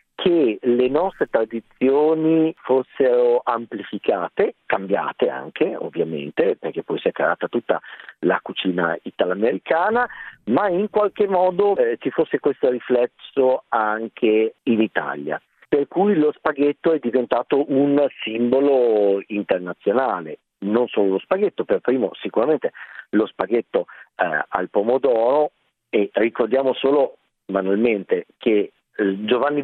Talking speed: 115 wpm